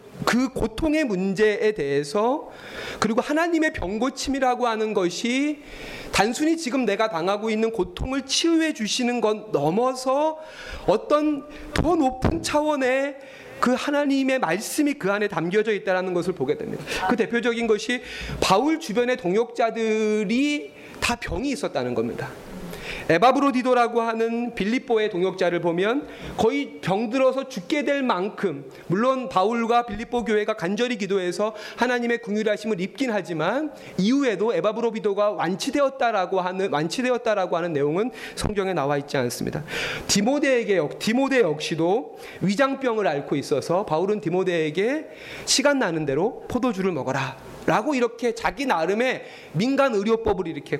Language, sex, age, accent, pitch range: Korean, male, 40-59, native, 190-260 Hz